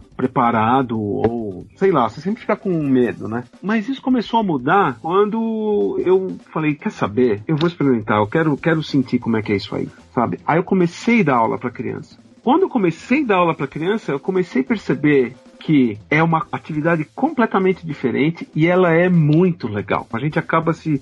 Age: 40-59